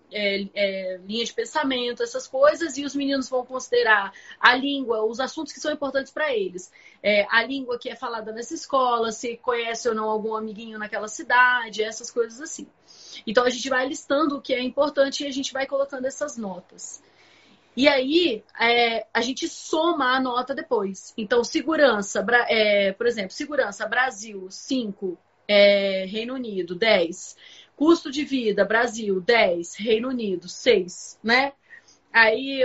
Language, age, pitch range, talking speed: Portuguese, 30-49, 215-265 Hz, 150 wpm